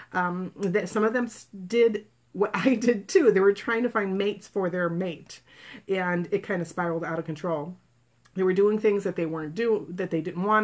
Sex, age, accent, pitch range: female, 30-49, American, 170-200 Hz